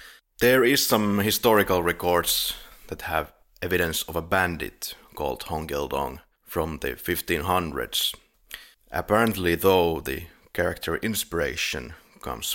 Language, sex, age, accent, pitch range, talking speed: English, male, 30-49, Finnish, 85-105 Hz, 110 wpm